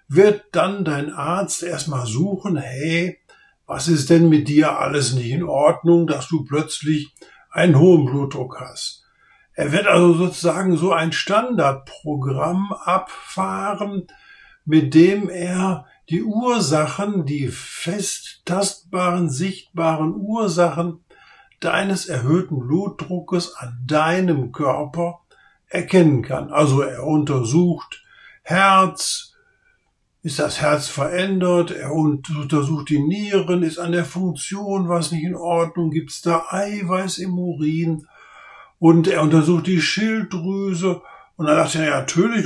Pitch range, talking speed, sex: 155-190 Hz, 120 wpm, male